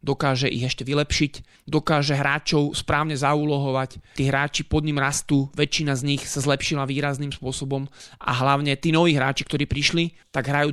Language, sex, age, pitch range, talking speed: Slovak, male, 20-39, 135-150 Hz, 160 wpm